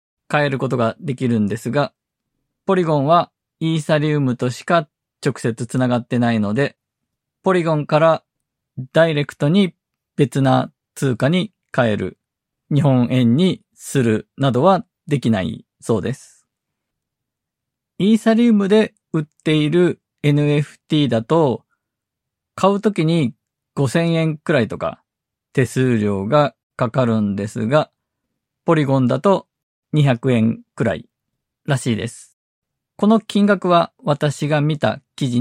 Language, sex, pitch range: Japanese, male, 120-160 Hz